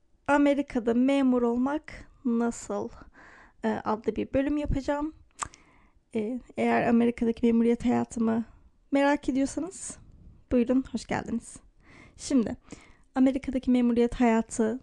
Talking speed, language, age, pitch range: 95 wpm, Turkish, 30-49, 225-260 Hz